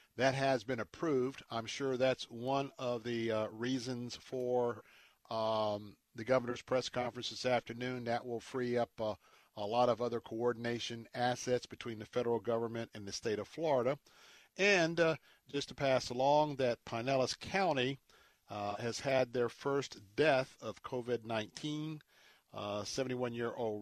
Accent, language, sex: American, English, male